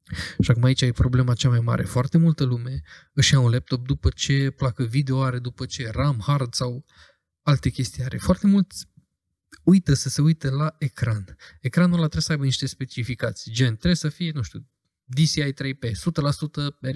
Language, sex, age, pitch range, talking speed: Romanian, male, 20-39, 120-150 Hz, 185 wpm